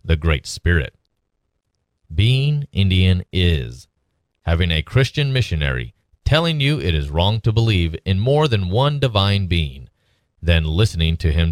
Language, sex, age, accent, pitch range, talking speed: English, male, 30-49, American, 80-115 Hz, 140 wpm